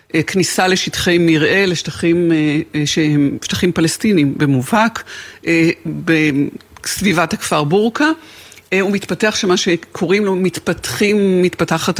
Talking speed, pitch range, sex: 85 wpm, 155-180 Hz, female